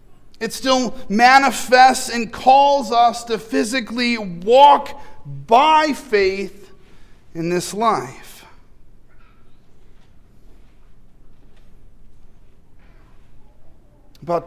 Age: 40-59